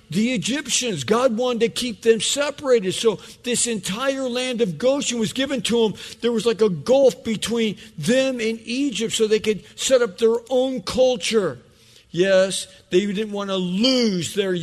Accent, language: American, English